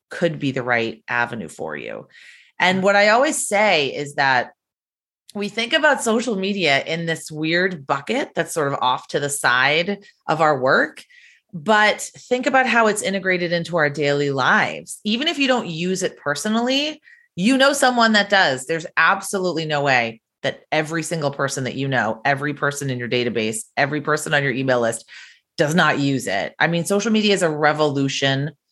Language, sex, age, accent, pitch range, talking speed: English, female, 30-49, American, 145-205 Hz, 185 wpm